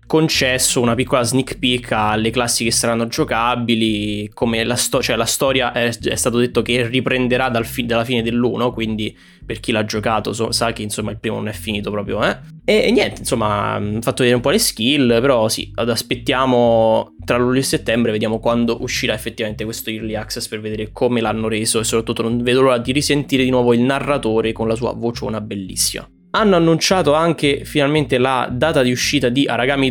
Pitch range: 115-140 Hz